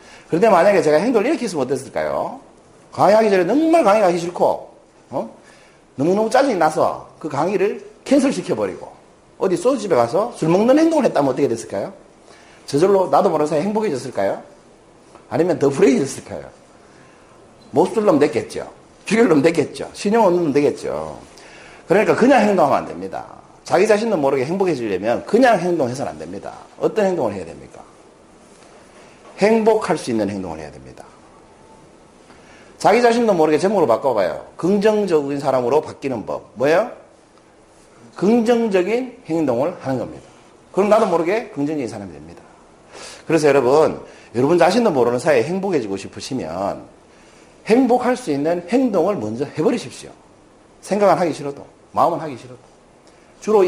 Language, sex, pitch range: Korean, male, 150-225 Hz